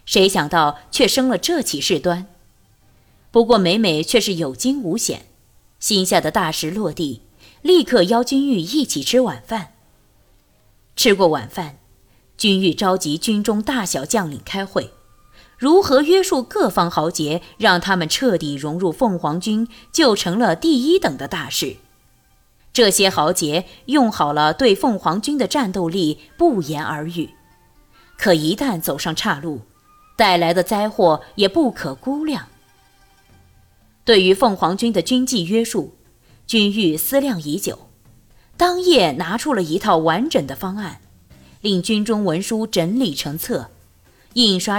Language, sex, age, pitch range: Chinese, female, 20-39, 150-235 Hz